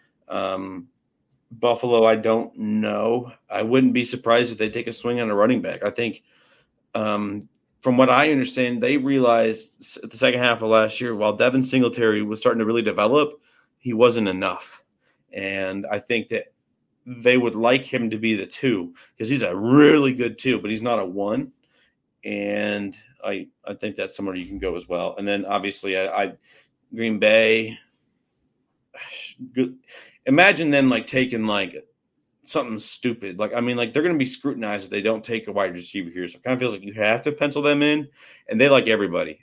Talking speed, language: 190 wpm, English